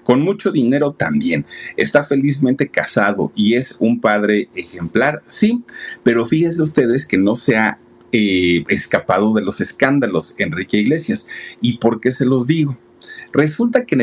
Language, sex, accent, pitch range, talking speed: Spanish, male, Mexican, 105-140 Hz, 155 wpm